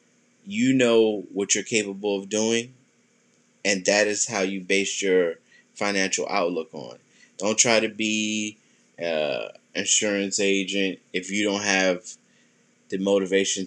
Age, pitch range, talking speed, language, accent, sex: 20-39, 95-110 Hz, 130 wpm, English, American, male